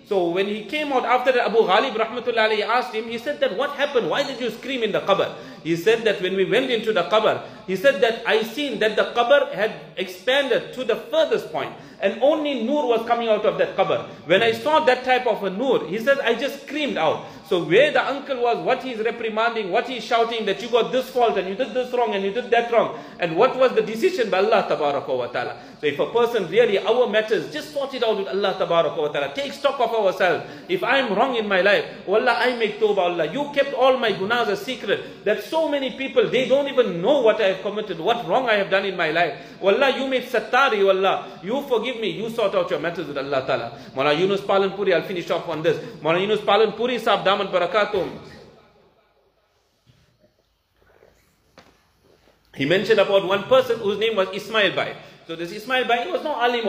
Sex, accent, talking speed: male, Indian, 220 wpm